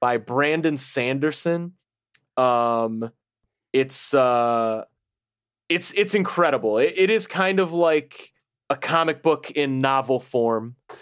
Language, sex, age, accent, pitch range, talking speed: English, male, 30-49, American, 120-155 Hz, 115 wpm